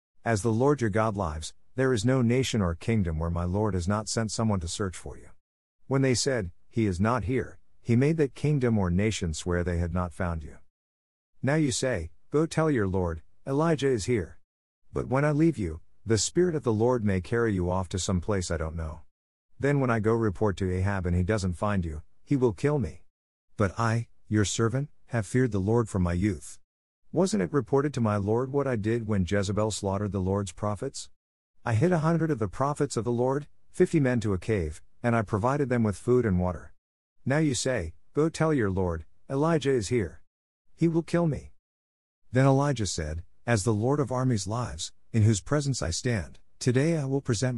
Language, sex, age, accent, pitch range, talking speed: English, male, 50-69, American, 90-130 Hz, 215 wpm